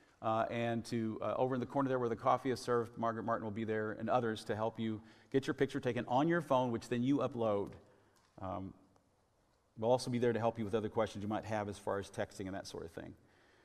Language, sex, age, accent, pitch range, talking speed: English, male, 40-59, American, 115-155 Hz, 255 wpm